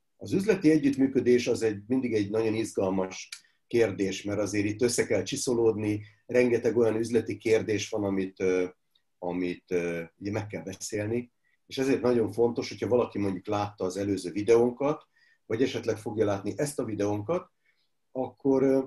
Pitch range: 100-135 Hz